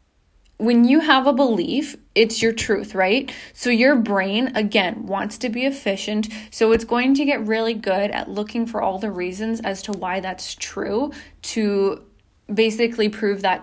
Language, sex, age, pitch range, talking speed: English, female, 20-39, 205-245 Hz, 170 wpm